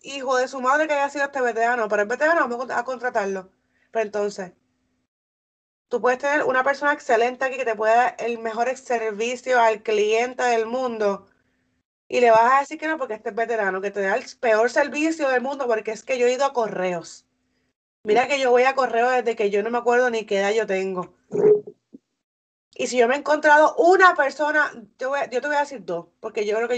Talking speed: 220 wpm